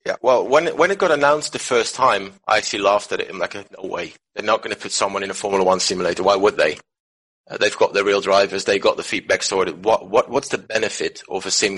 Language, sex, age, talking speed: English, male, 30-49, 265 wpm